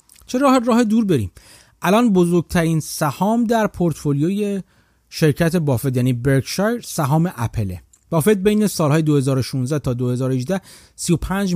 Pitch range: 120-175 Hz